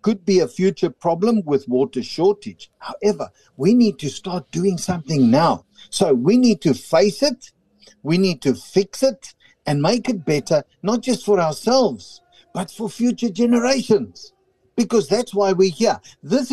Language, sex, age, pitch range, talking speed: English, male, 60-79, 160-215 Hz, 165 wpm